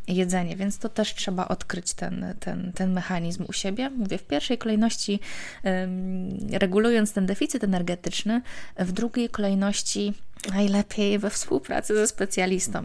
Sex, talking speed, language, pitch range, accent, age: female, 135 wpm, Polish, 185-215 Hz, native, 20-39